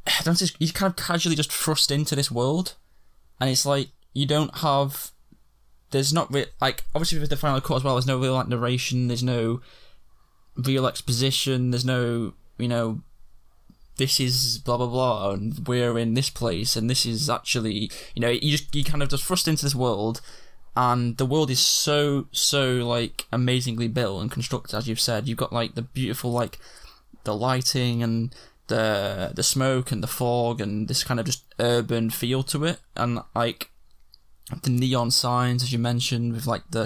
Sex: male